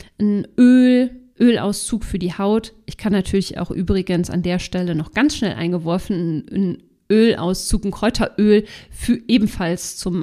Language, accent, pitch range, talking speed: German, German, 185-225 Hz, 145 wpm